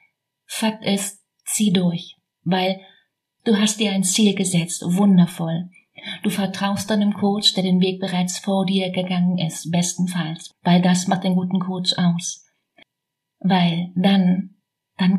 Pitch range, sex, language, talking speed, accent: 175-195 Hz, female, German, 140 wpm, German